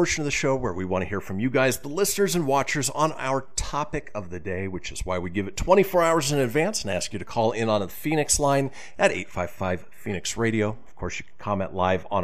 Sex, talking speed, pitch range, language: male, 260 wpm, 90-135 Hz, English